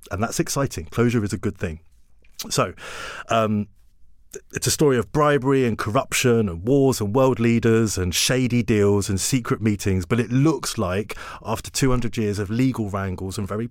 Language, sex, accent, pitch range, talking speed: English, male, British, 95-120 Hz, 175 wpm